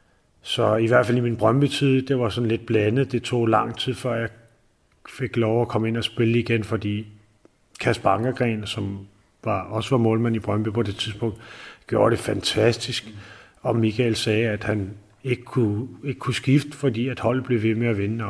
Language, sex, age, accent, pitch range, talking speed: Danish, male, 40-59, native, 110-120 Hz, 195 wpm